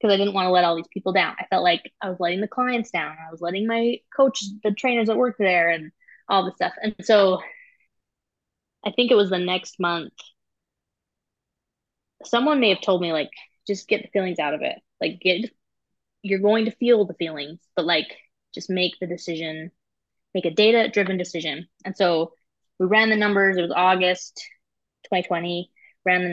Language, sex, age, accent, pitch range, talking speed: English, female, 20-39, American, 175-210 Hz, 195 wpm